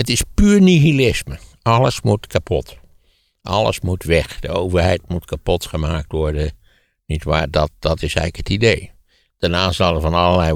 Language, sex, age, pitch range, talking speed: Dutch, male, 60-79, 75-90 Hz, 165 wpm